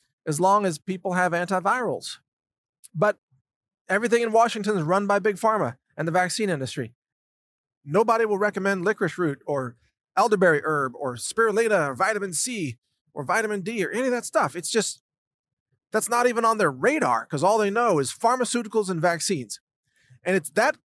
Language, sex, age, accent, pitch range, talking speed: English, male, 40-59, American, 145-230 Hz, 170 wpm